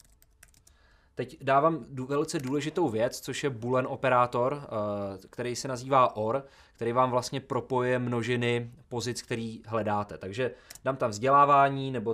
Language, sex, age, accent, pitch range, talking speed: Czech, male, 20-39, native, 95-120 Hz, 130 wpm